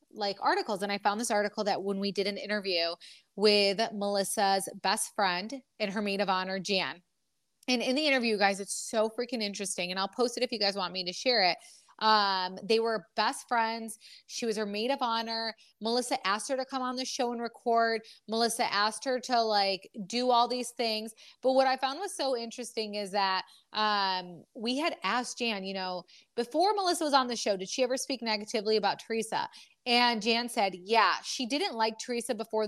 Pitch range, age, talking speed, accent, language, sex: 205-255 Hz, 20-39, 205 wpm, American, English, female